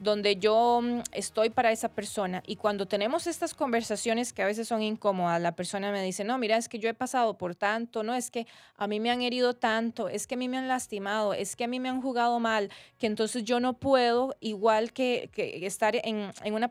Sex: female